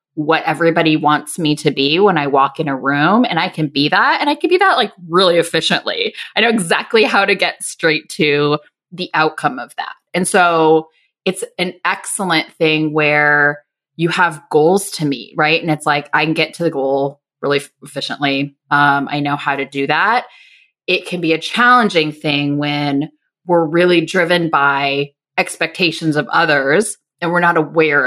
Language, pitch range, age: English, 150-185 Hz, 20-39